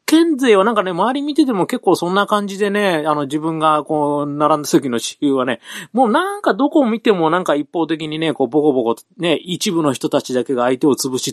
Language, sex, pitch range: Japanese, male, 135-215 Hz